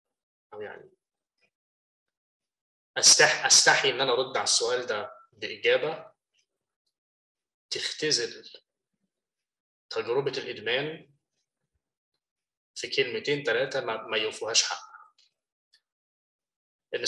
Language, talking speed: Arabic, 70 wpm